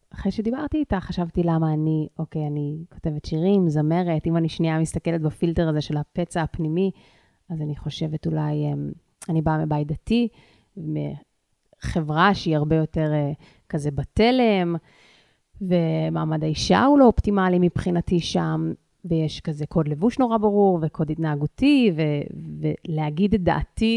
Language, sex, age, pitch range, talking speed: Hebrew, female, 30-49, 155-190 Hz, 135 wpm